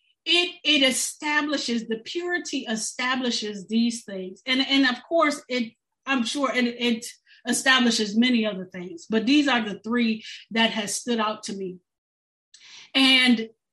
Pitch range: 220-280 Hz